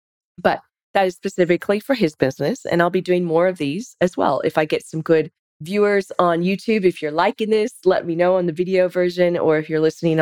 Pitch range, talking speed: 155-190 Hz, 230 wpm